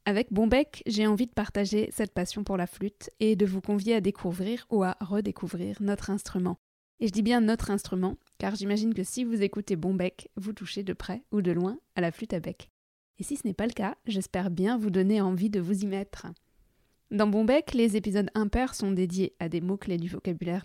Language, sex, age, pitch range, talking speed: French, female, 20-39, 185-225 Hz, 220 wpm